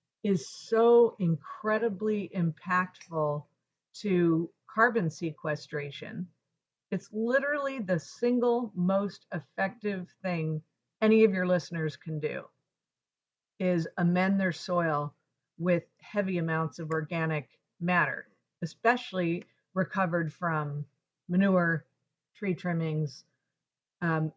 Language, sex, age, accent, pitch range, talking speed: English, female, 50-69, American, 155-195 Hz, 90 wpm